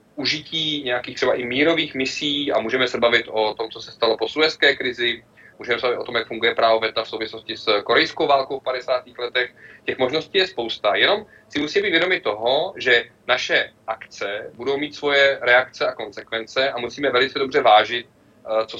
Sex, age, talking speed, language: male, 30-49, 190 wpm, Czech